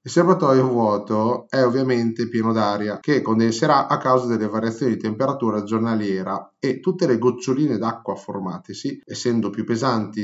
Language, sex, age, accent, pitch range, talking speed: Italian, male, 30-49, native, 110-140 Hz, 145 wpm